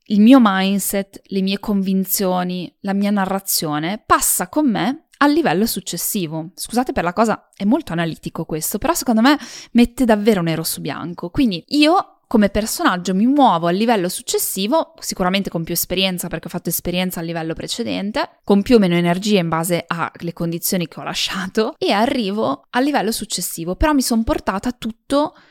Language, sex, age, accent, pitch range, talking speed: Italian, female, 20-39, native, 180-255 Hz, 170 wpm